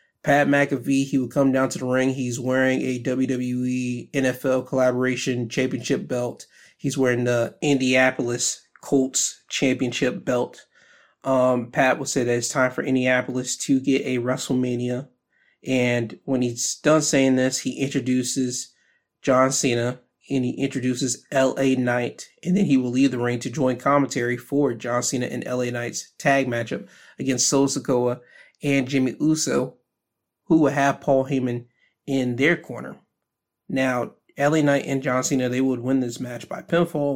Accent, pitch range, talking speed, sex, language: American, 125-140 Hz, 155 wpm, male, English